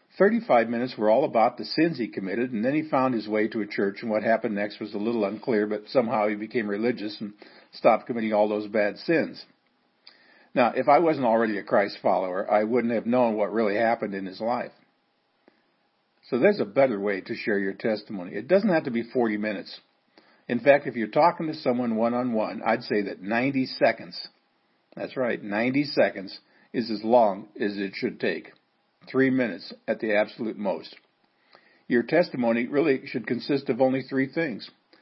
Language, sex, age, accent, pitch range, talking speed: English, male, 50-69, American, 110-135 Hz, 190 wpm